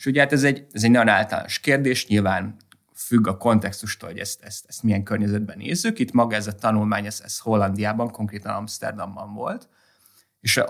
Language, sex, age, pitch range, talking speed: Hungarian, male, 30-49, 100-135 Hz, 185 wpm